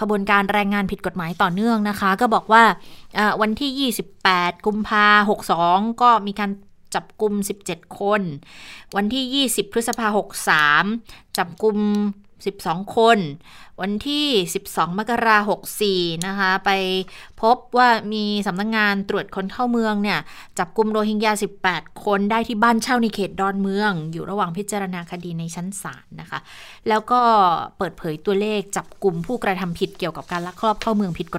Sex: female